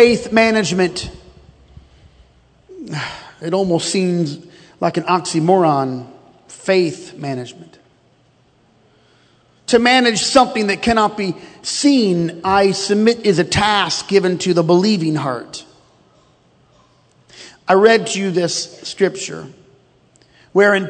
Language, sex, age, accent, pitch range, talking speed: English, male, 40-59, American, 165-230 Hz, 100 wpm